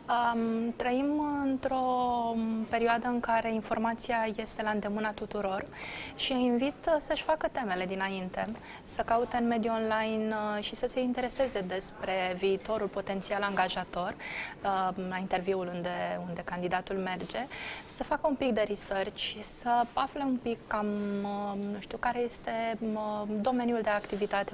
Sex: female